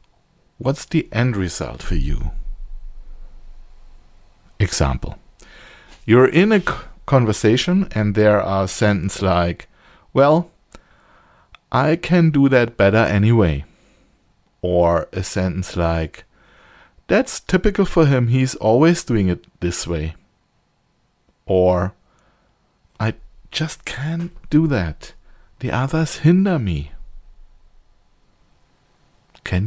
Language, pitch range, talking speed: English, 85-135 Hz, 95 wpm